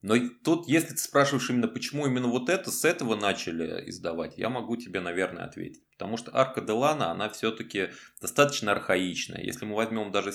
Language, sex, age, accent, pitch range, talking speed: Russian, male, 20-39, native, 95-130 Hz, 180 wpm